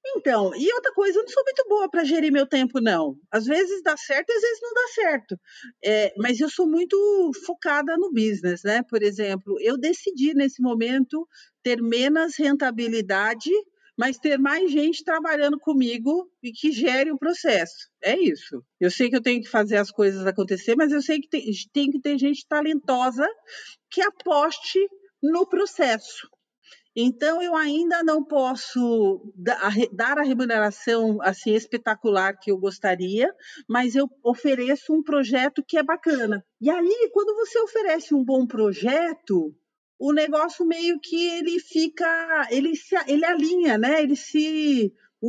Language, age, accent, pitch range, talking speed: Portuguese, 40-59, Brazilian, 230-325 Hz, 160 wpm